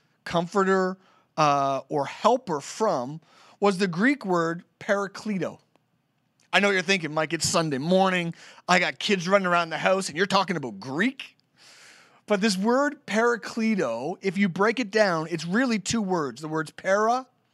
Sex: male